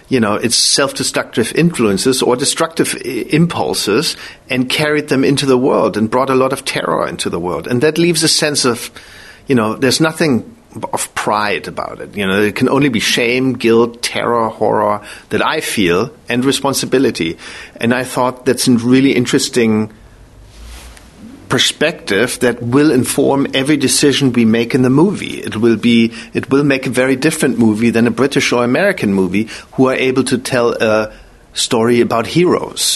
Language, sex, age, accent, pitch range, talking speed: English, male, 50-69, German, 115-135 Hz, 175 wpm